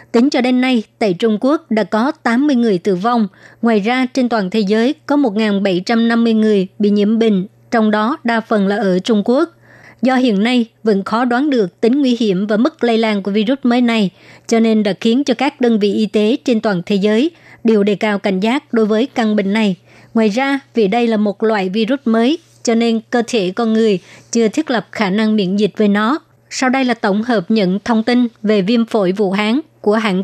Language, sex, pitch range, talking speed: Vietnamese, male, 210-245 Hz, 225 wpm